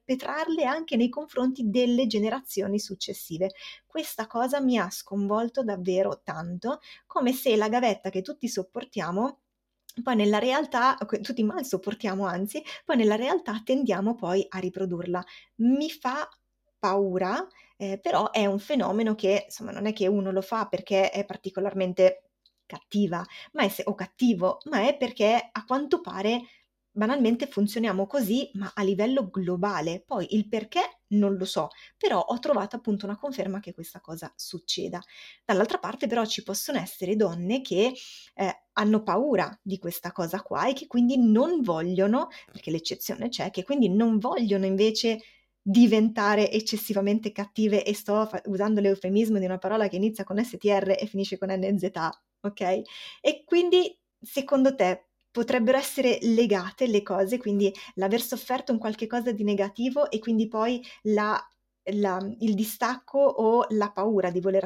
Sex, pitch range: female, 195-250 Hz